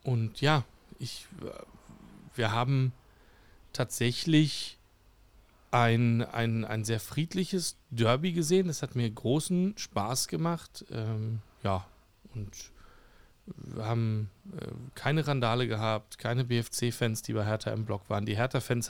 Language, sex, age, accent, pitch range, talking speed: German, male, 40-59, German, 110-130 Hz, 115 wpm